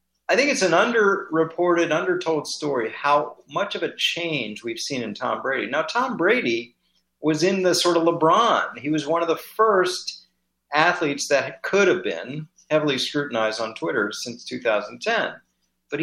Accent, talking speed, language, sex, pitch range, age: American, 165 wpm, English, male, 105-170 Hz, 40-59